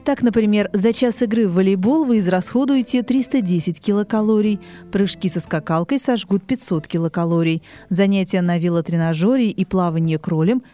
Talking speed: 130 wpm